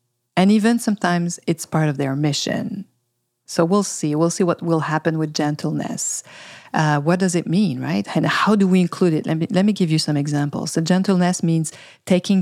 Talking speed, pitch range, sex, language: 205 wpm, 150-185 Hz, female, English